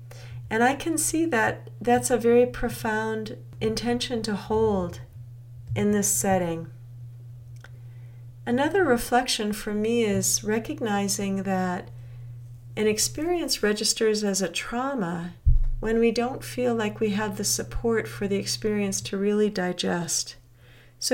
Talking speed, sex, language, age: 125 wpm, female, English, 40-59